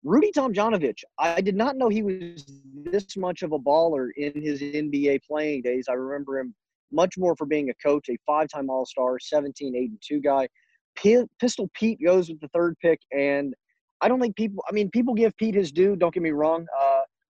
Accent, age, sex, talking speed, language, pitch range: American, 30-49, male, 200 wpm, English, 140-190 Hz